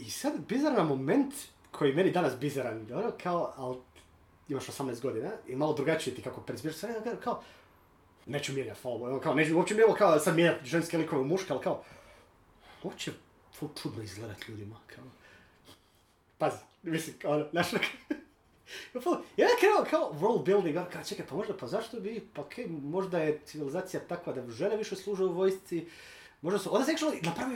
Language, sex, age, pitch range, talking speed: Croatian, male, 30-49, 130-175 Hz, 165 wpm